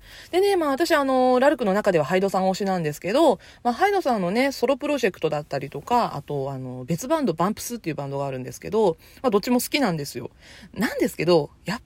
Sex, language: female, Japanese